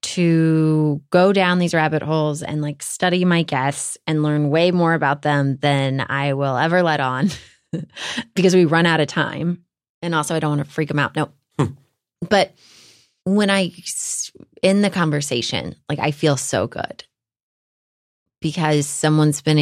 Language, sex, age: English, female, 20-39